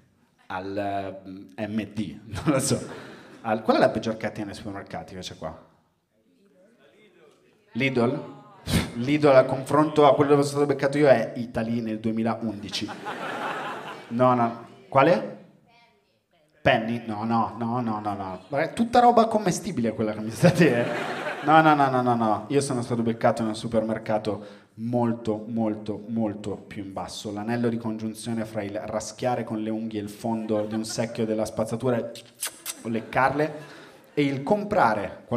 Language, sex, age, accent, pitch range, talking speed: Italian, male, 30-49, native, 110-130 Hz, 150 wpm